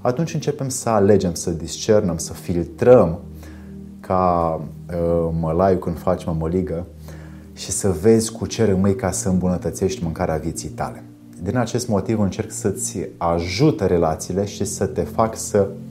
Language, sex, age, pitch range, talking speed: Romanian, male, 30-49, 85-105 Hz, 150 wpm